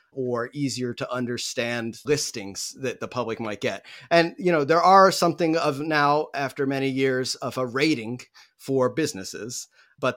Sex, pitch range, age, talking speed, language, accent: male, 120-145 Hz, 40-59, 160 wpm, English, American